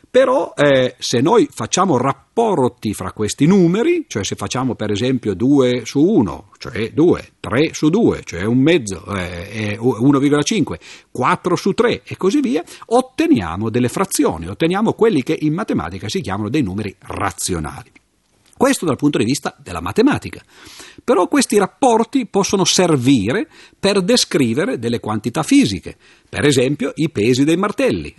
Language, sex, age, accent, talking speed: Italian, male, 50-69, native, 145 wpm